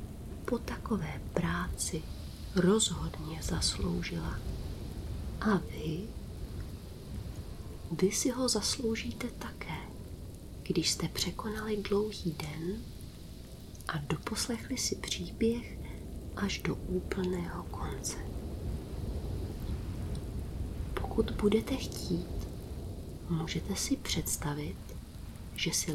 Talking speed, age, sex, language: 75 wpm, 30-49, female, Czech